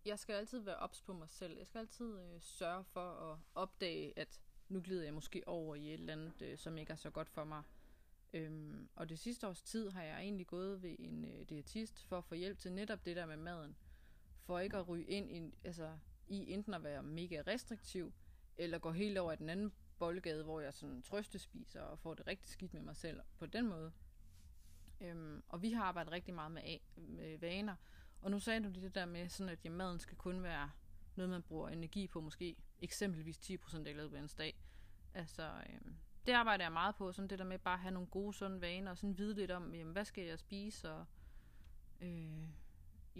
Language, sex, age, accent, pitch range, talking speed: Danish, female, 20-39, native, 160-195 Hz, 225 wpm